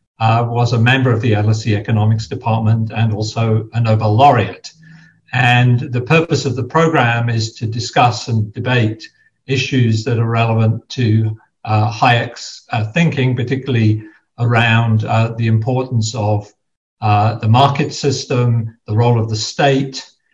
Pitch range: 115-135 Hz